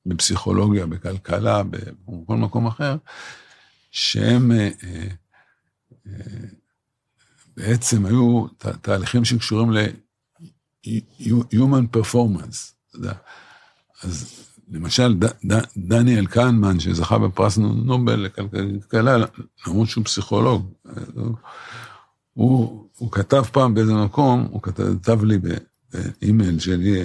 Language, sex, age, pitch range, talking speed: Hebrew, male, 60-79, 100-120 Hz, 95 wpm